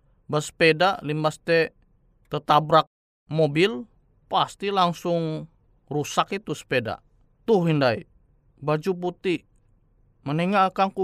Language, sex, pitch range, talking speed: Indonesian, male, 130-180 Hz, 80 wpm